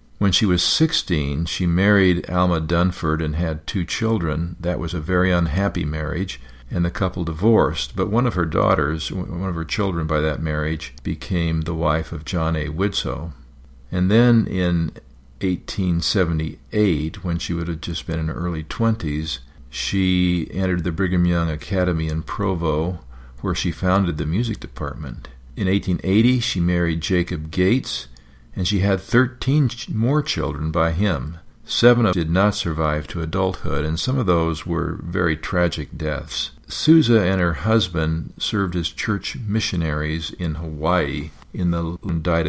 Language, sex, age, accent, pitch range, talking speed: English, male, 50-69, American, 80-95 Hz, 160 wpm